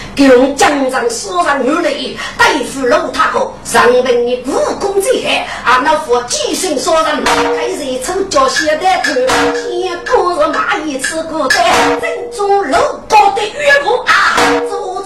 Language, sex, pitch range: Chinese, female, 270-395 Hz